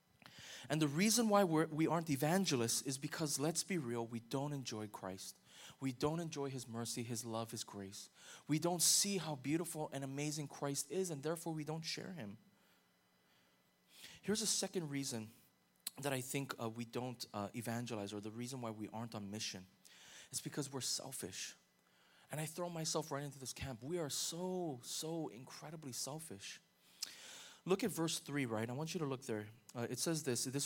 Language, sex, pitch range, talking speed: English, male, 115-160 Hz, 185 wpm